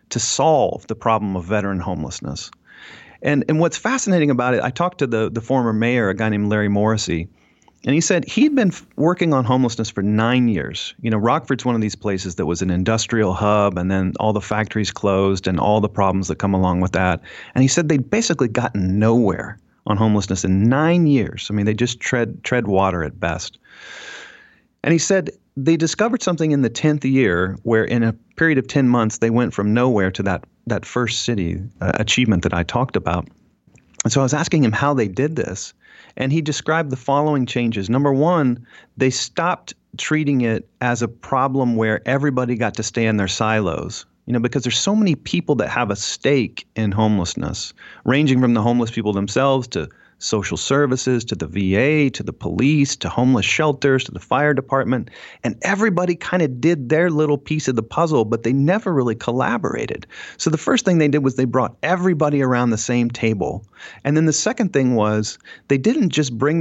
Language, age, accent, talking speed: English, 40-59, American, 200 wpm